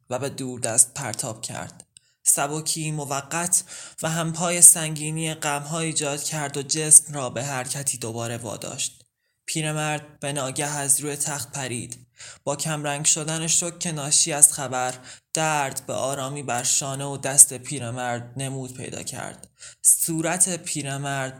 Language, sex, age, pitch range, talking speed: Persian, male, 20-39, 125-150 Hz, 135 wpm